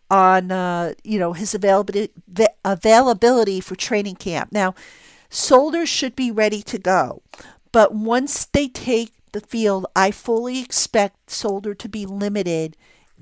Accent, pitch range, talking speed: American, 190-230 Hz, 135 wpm